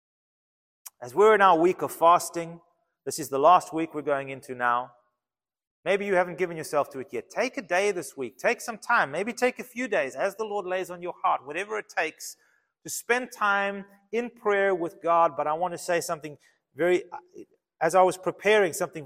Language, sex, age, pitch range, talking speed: English, male, 30-49, 150-210 Hz, 210 wpm